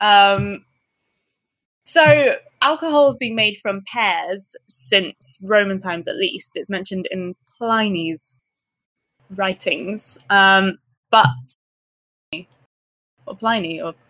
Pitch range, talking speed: 180-230 Hz, 95 wpm